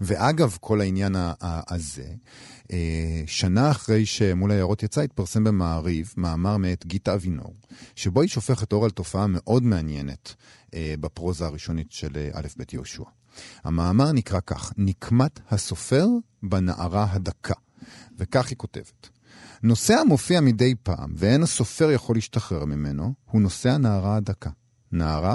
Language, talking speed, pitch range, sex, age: Hebrew, 125 wpm, 90-125 Hz, male, 40-59